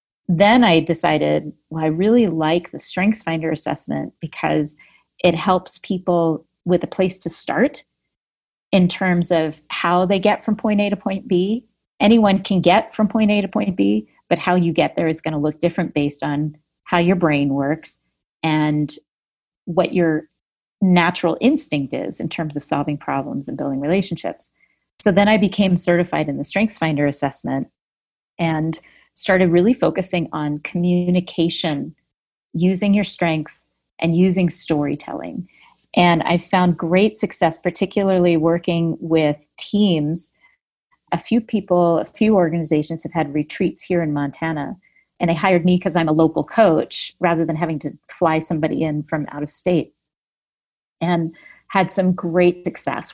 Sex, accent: female, American